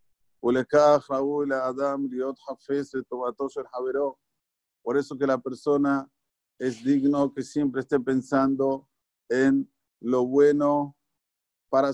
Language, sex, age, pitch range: Spanish, male, 50-69, 125-145 Hz